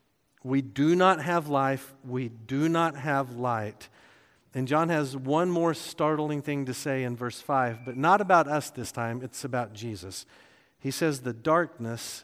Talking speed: 170 wpm